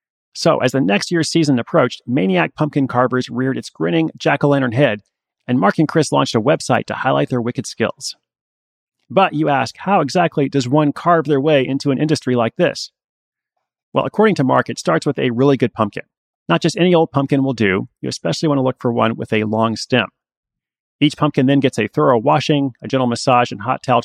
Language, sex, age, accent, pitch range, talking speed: English, male, 30-49, American, 125-155 Hz, 210 wpm